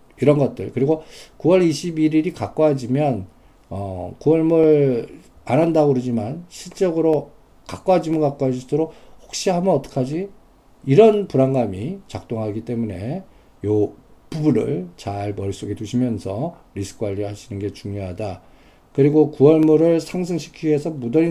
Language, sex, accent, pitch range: Korean, male, native, 110-155 Hz